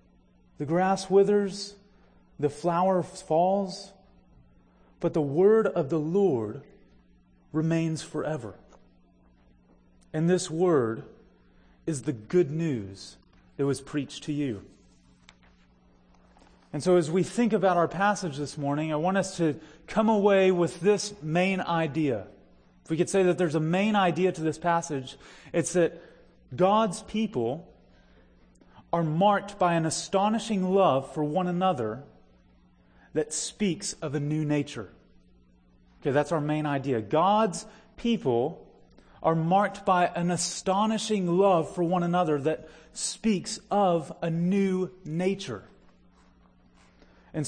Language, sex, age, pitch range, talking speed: English, male, 30-49, 140-190 Hz, 125 wpm